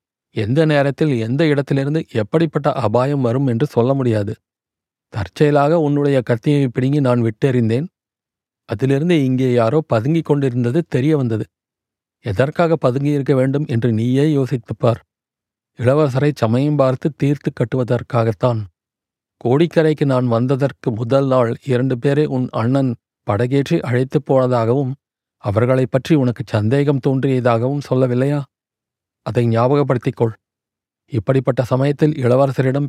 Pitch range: 120-145 Hz